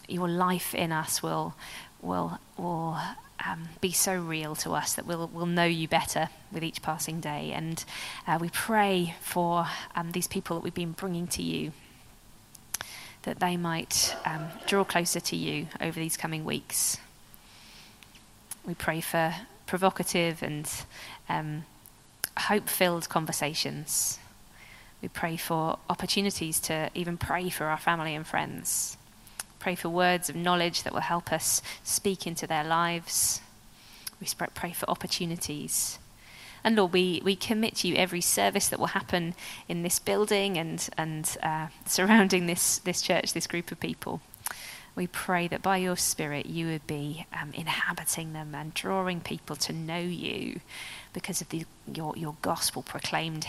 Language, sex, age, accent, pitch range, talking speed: English, female, 20-39, British, 155-180 Hz, 155 wpm